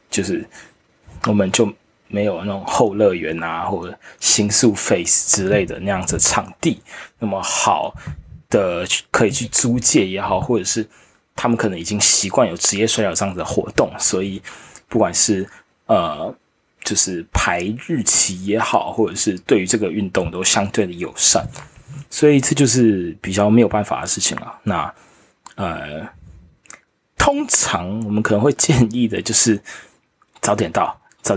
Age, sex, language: 20-39, male, Chinese